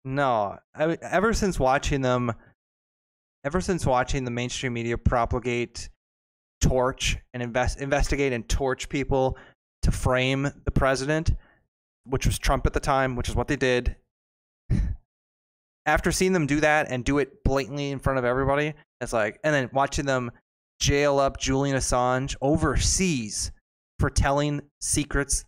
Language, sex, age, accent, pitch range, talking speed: English, male, 20-39, American, 115-140 Hz, 145 wpm